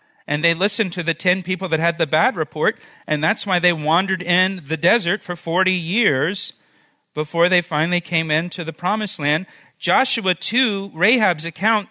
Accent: American